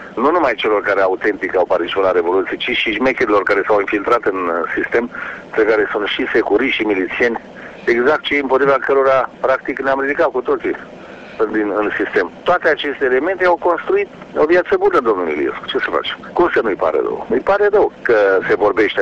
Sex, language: male, Romanian